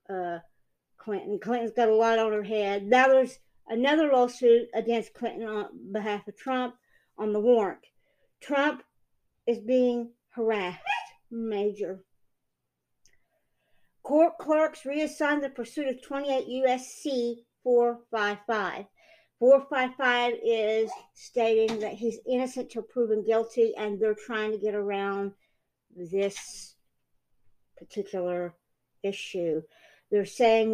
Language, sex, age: English, female, 50-69